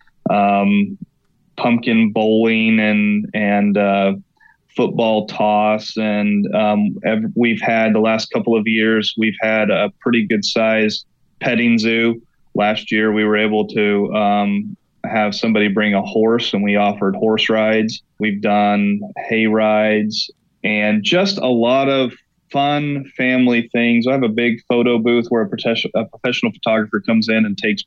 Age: 20-39